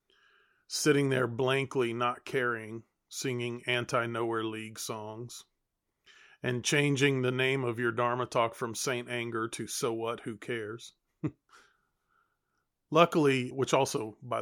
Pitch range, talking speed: 115-135 Hz, 120 wpm